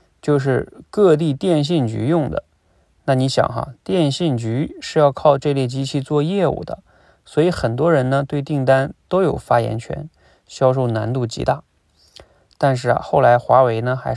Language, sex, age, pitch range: Chinese, male, 20-39, 120-155 Hz